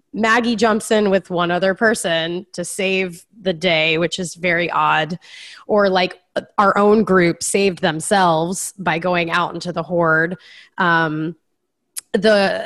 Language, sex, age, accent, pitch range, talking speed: English, female, 20-39, American, 165-195 Hz, 140 wpm